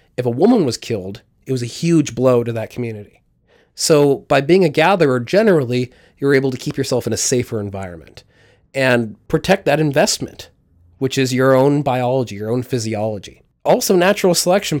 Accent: American